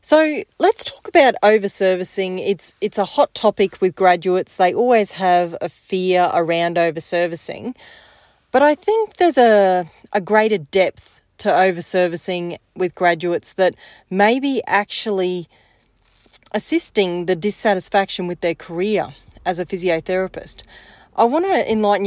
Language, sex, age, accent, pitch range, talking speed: English, female, 30-49, Australian, 175-200 Hz, 130 wpm